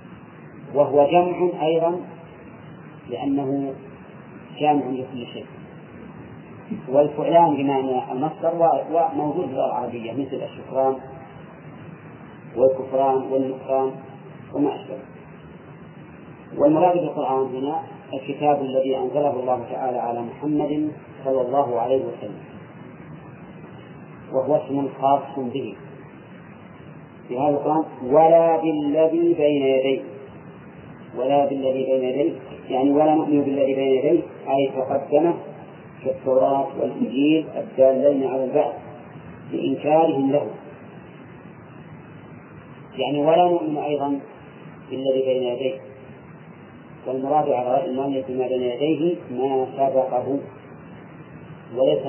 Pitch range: 130-150 Hz